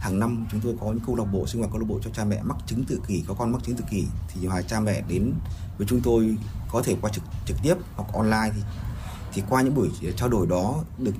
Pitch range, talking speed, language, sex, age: 100-125 Hz, 285 wpm, Vietnamese, male, 20-39